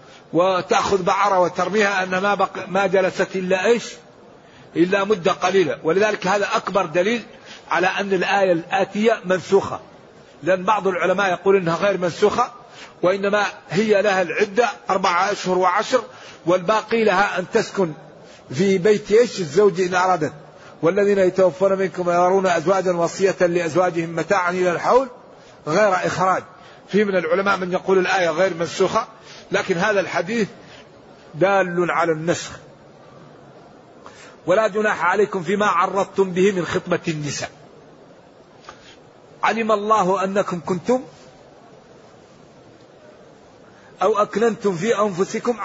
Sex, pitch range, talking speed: male, 180-205 Hz, 115 wpm